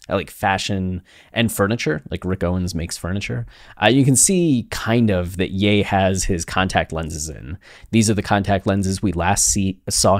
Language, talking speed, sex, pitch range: English, 180 wpm, male, 90-110 Hz